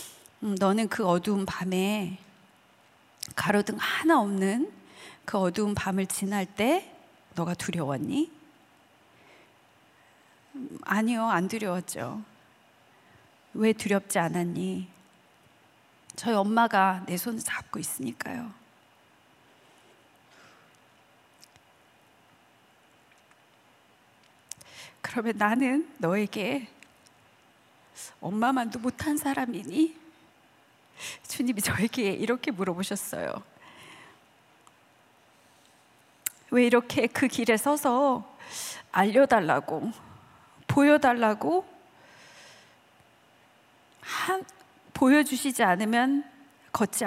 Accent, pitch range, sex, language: native, 200-270 Hz, female, Korean